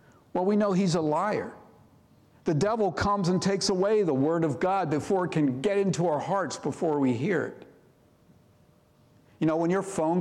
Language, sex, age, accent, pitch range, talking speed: English, male, 60-79, American, 125-185 Hz, 190 wpm